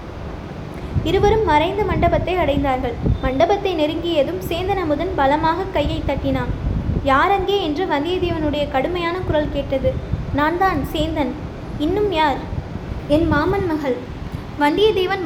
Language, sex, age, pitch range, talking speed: Tamil, female, 20-39, 290-360 Hz, 95 wpm